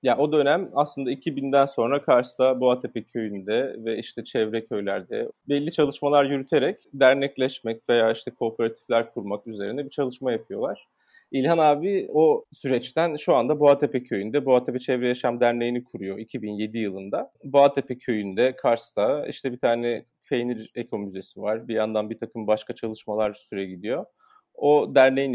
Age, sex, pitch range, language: 30-49, male, 110-135 Hz, German